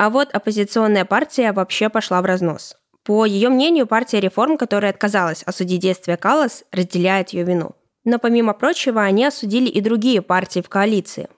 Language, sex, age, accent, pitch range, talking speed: Russian, female, 20-39, native, 190-230 Hz, 165 wpm